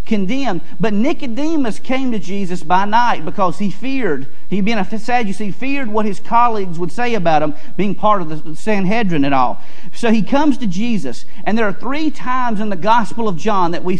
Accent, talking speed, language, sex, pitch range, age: American, 205 wpm, English, male, 175-235 Hz, 40-59